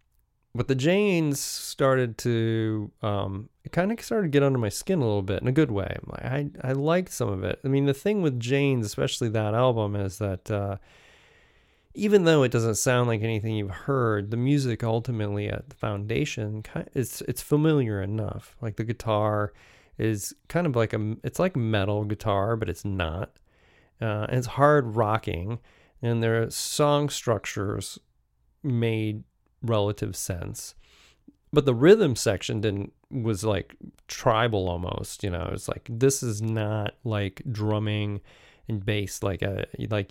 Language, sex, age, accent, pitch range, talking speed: English, male, 30-49, American, 105-135 Hz, 165 wpm